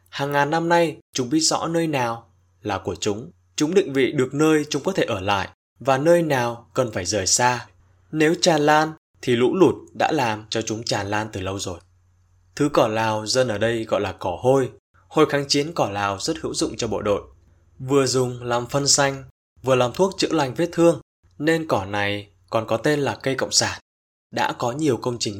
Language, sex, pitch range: Vietnamese, male, 100-140 Hz